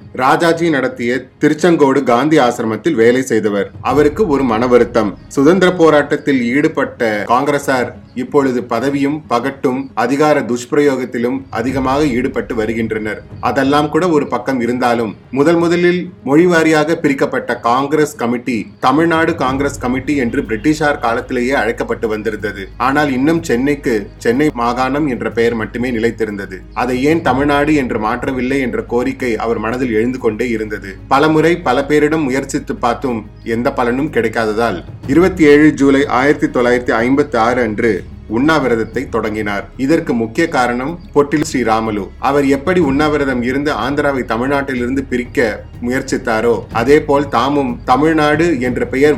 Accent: native